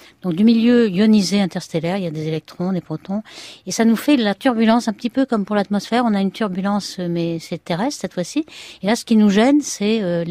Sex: female